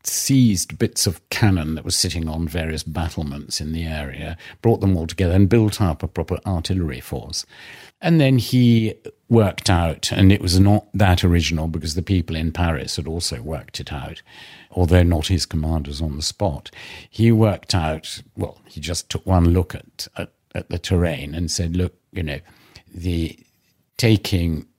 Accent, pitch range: British, 80-100 Hz